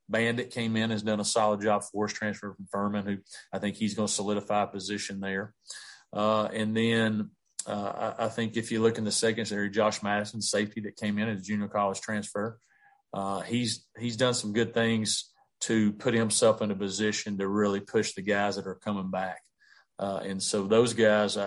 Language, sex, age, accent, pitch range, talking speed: English, male, 40-59, American, 100-110 Hz, 200 wpm